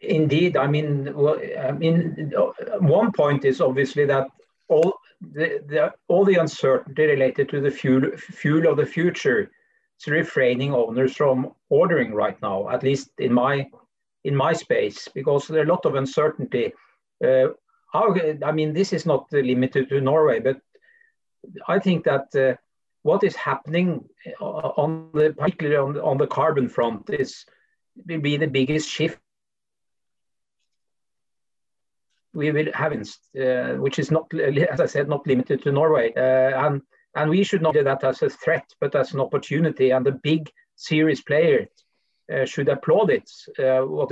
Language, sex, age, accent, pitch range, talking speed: English, male, 50-69, Norwegian, 135-170 Hz, 160 wpm